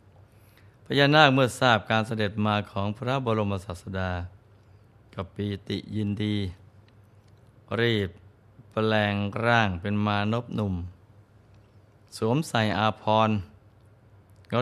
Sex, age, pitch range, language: male, 20-39, 100-110 Hz, Thai